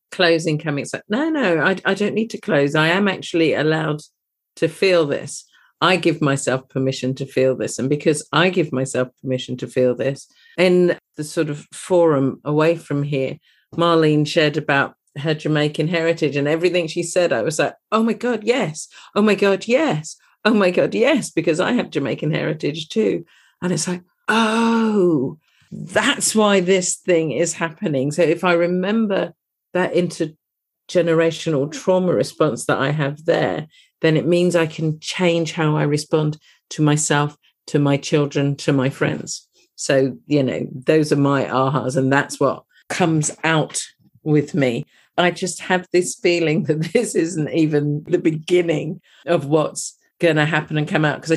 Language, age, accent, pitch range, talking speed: English, 50-69, British, 145-180 Hz, 170 wpm